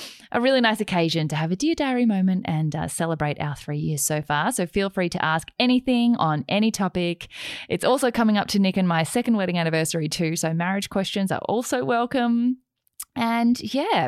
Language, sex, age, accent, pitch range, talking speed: English, female, 10-29, Australian, 155-215 Hz, 200 wpm